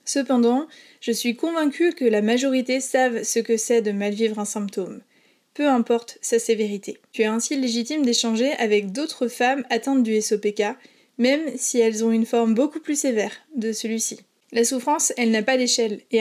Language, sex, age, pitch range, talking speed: French, female, 20-39, 225-270 Hz, 180 wpm